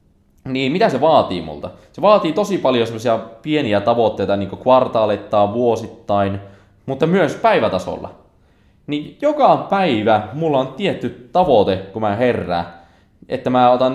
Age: 20-39